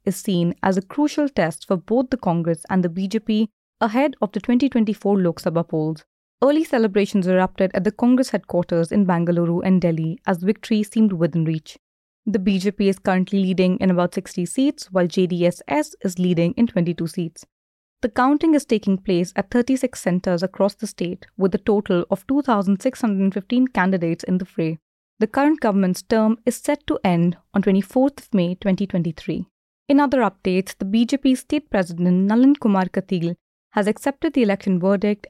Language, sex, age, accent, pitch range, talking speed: English, female, 20-39, Indian, 185-240 Hz, 170 wpm